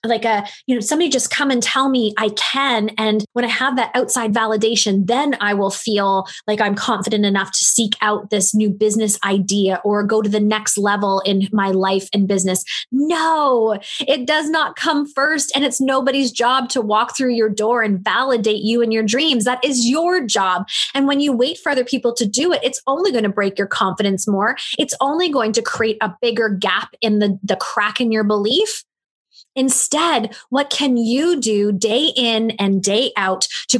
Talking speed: 200 wpm